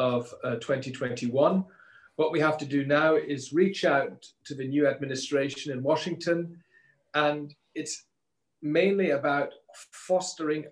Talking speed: 130 wpm